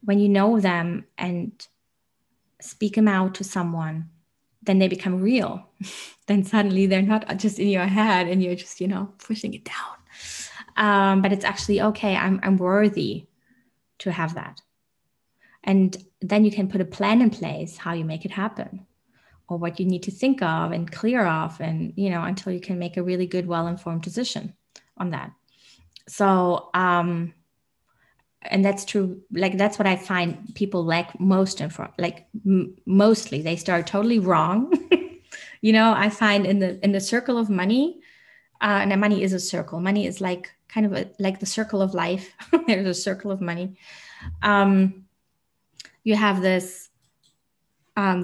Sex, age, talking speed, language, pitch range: female, 20-39, 175 wpm, English, 180-210 Hz